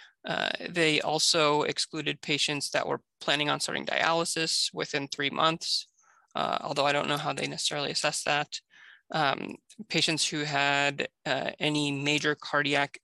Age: 20-39